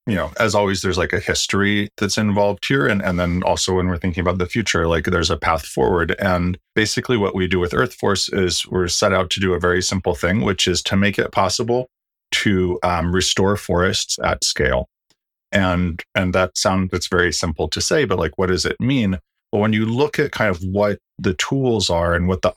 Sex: male